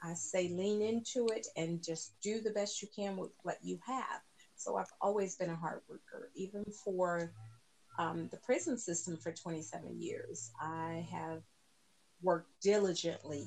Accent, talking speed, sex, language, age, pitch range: American, 160 wpm, female, English, 40-59, 160-210 Hz